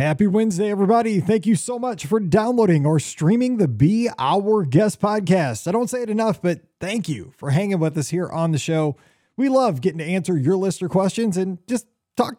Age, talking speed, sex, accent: 30-49, 210 wpm, male, American